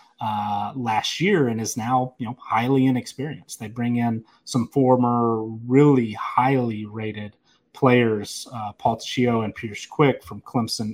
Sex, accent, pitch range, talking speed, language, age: male, American, 110-130 Hz, 150 wpm, English, 30-49